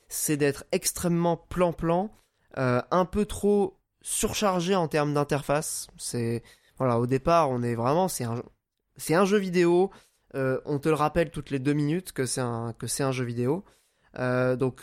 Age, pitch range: 20-39, 130-175 Hz